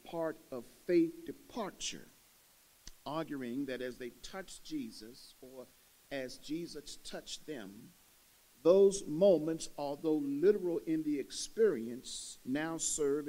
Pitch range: 130-195 Hz